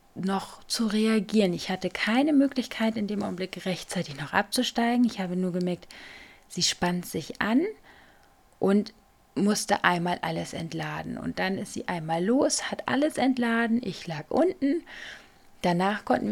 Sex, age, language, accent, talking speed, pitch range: female, 30-49, German, German, 145 wpm, 175-235 Hz